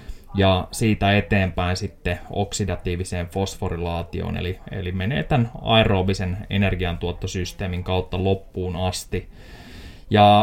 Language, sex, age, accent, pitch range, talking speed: Finnish, male, 20-39, native, 90-110 Hz, 90 wpm